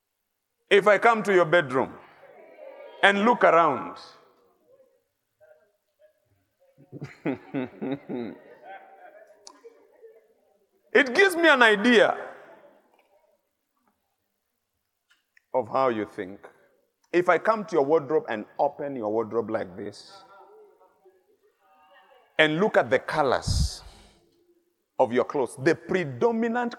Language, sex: English, male